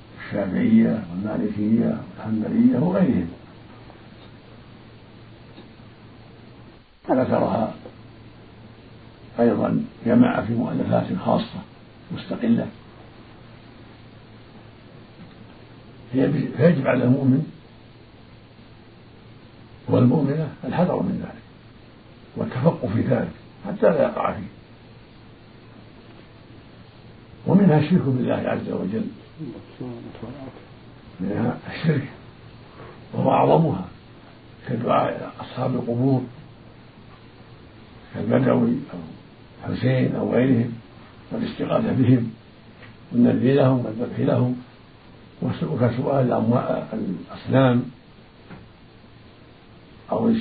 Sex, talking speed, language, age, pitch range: male, 65 wpm, Arabic, 60-79, 115-125 Hz